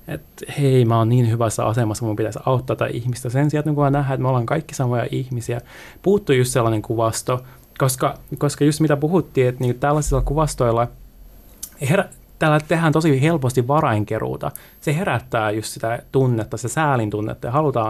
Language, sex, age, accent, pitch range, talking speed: Finnish, male, 20-39, native, 115-150 Hz, 170 wpm